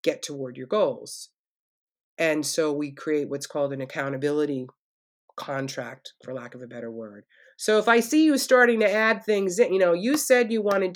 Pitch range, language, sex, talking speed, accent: 150-205 Hz, English, female, 190 wpm, American